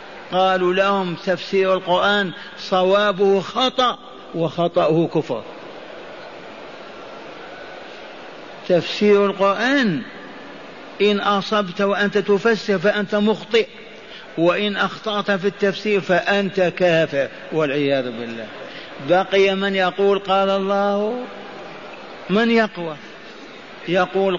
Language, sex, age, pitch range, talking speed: Arabic, male, 50-69, 185-210 Hz, 80 wpm